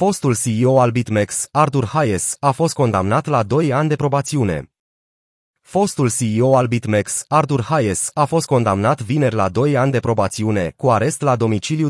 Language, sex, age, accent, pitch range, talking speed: Romanian, male, 20-39, native, 115-150 Hz, 165 wpm